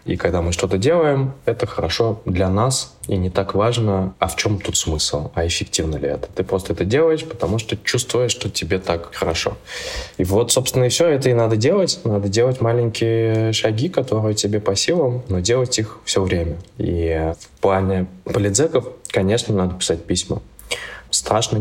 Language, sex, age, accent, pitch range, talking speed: Russian, male, 20-39, native, 85-110 Hz, 180 wpm